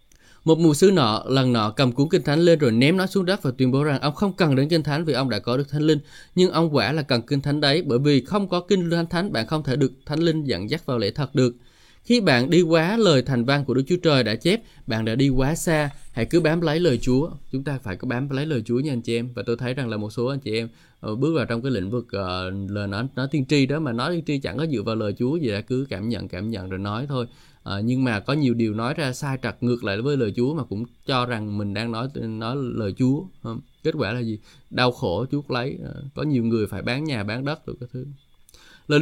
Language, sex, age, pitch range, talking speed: Vietnamese, male, 20-39, 120-155 Hz, 285 wpm